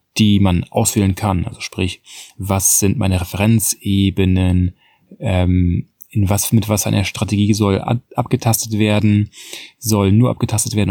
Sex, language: male, German